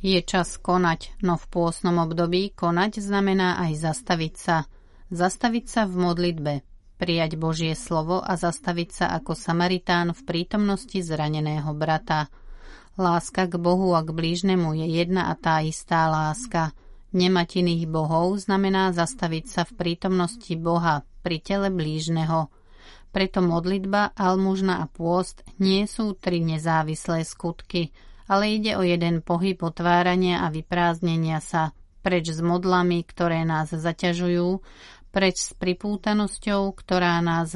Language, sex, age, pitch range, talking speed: Slovak, female, 30-49, 160-185 Hz, 130 wpm